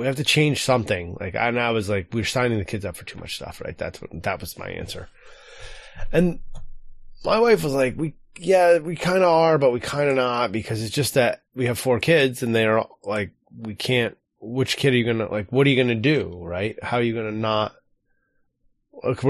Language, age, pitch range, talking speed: English, 20-39, 110-145 Hz, 245 wpm